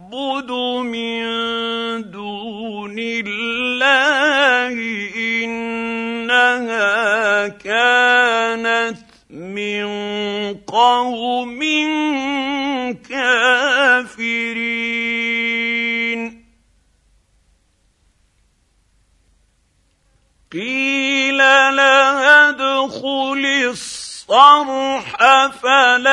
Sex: male